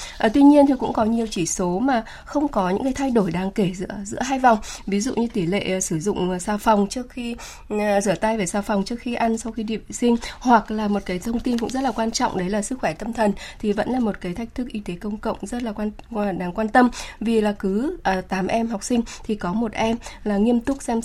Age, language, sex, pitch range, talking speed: 20-39, Vietnamese, female, 200-245 Hz, 275 wpm